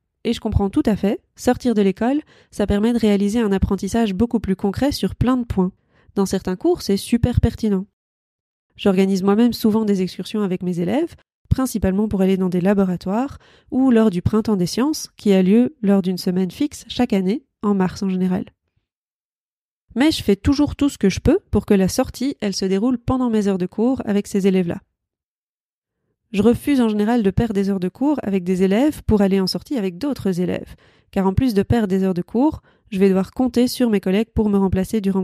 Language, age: French, 30-49